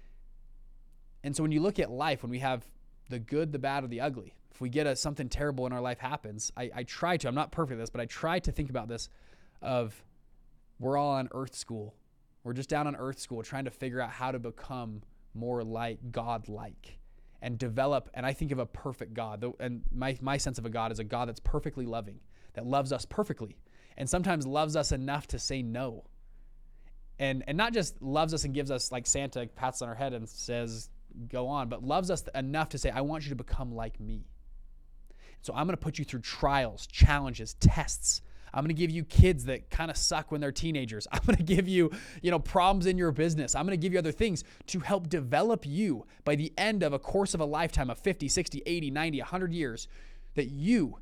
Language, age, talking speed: English, 20-39, 230 wpm